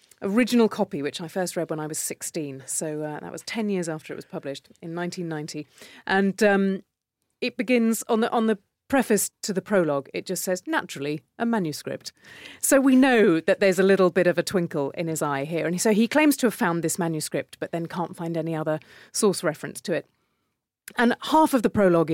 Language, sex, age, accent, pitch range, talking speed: English, female, 30-49, British, 160-200 Hz, 215 wpm